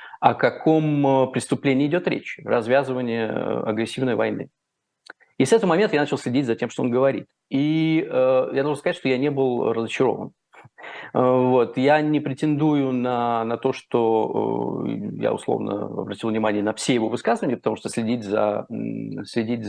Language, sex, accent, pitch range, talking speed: Russian, male, native, 115-145 Hz, 145 wpm